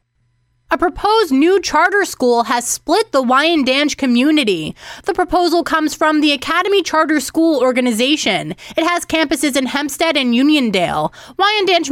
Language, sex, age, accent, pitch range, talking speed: English, female, 20-39, American, 250-330 Hz, 135 wpm